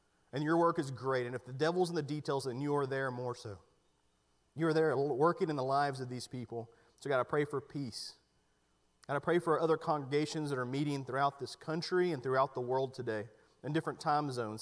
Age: 40-59